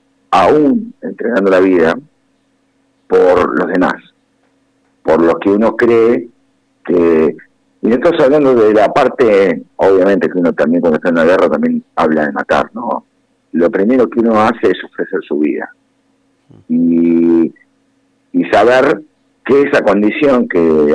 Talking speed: 145 wpm